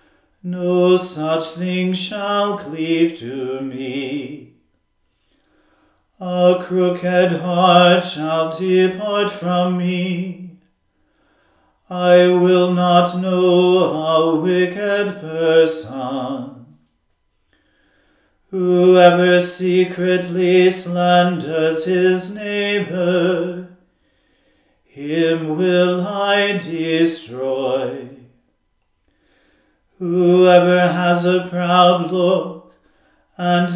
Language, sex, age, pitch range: English, male, 40-59, 165-185 Hz